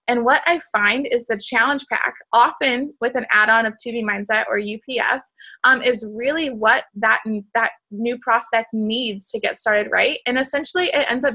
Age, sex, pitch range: 20-39, female, 220-265 Hz